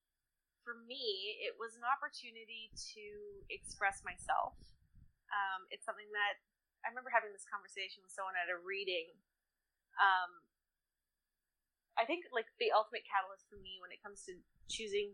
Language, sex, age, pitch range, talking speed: English, female, 20-39, 190-230 Hz, 145 wpm